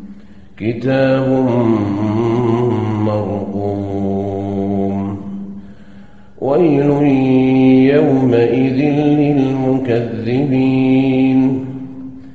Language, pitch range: Arabic, 110-145 Hz